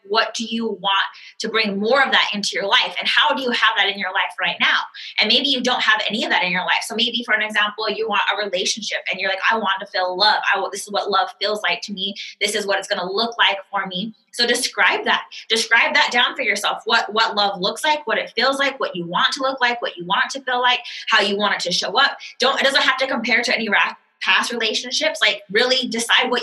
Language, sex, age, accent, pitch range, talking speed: English, female, 20-39, American, 200-240 Hz, 280 wpm